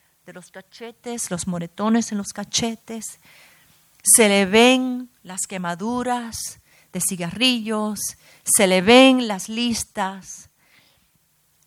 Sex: female